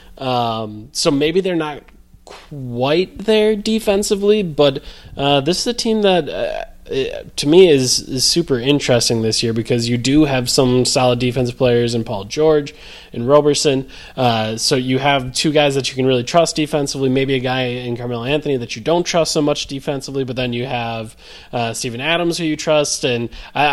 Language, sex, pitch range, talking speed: English, male, 120-145 Hz, 185 wpm